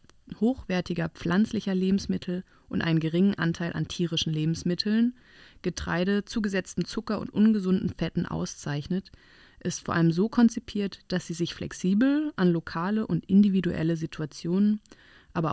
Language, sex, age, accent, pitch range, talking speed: German, female, 30-49, German, 165-205 Hz, 125 wpm